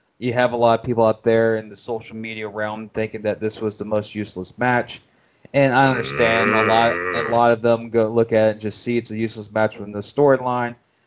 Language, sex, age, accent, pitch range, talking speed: English, male, 20-39, American, 105-120 Hz, 235 wpm